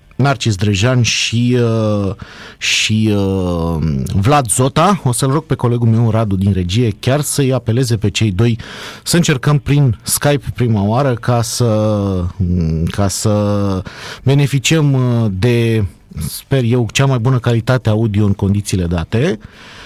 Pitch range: 105-140 Hz